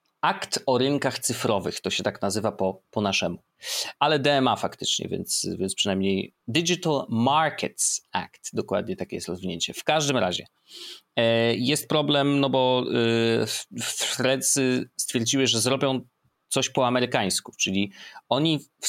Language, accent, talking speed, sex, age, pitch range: Polish, native, 130 wpm, male, 30-49, 110-140 Hz